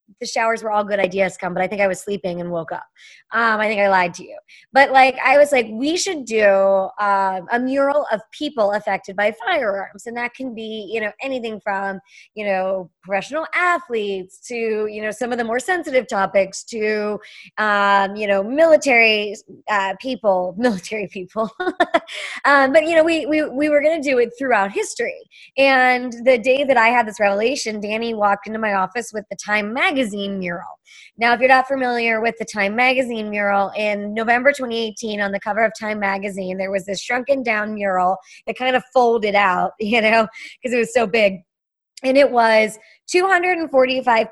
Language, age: English, 20-39